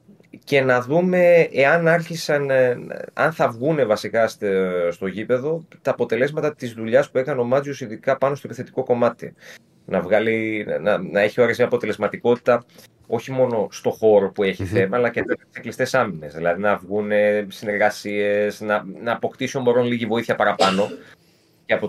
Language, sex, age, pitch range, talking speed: Greek, male, 30-49, 105-155 Hz, 145 wpm